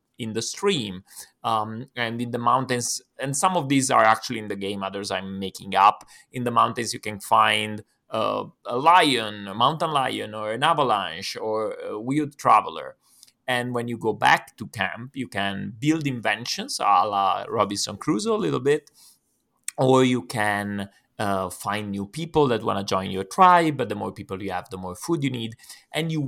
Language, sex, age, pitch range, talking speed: English, male, 30-49, 105-140 Hz, 190 wpm